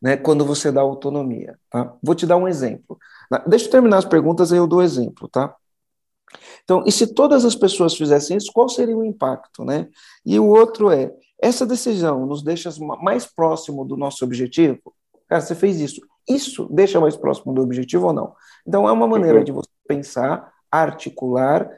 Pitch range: 135-185 Hz